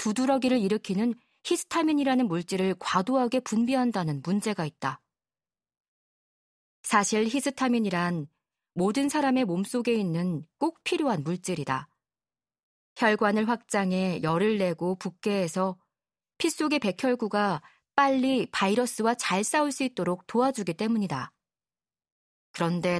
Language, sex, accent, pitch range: Korean, female, native, 180-250 Hz